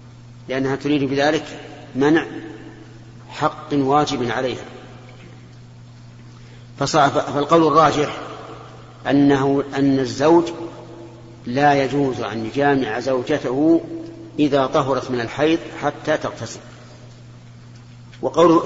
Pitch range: 120-145 Hz